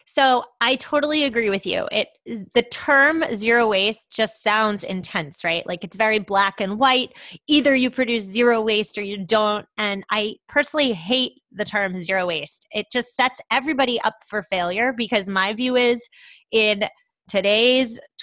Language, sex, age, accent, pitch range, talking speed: English, female, 20-39, American, 195-250 Hz, 165 wpm